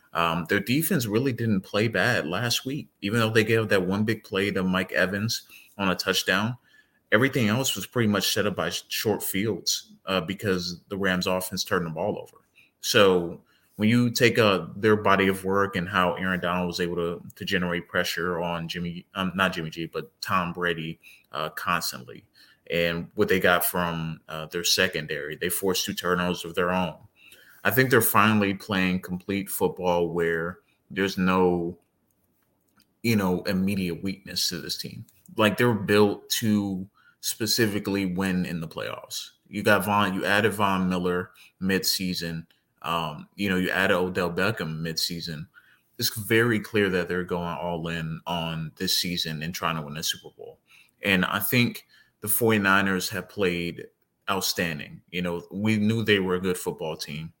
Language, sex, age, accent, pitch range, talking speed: English, male, 30-49, American, 85-105 Hz, 170 wpm